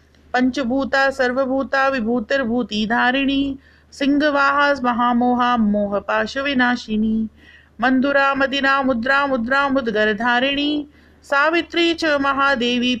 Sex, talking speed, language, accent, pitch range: female, 75 wpm, Hindi, native, 220-270 Hz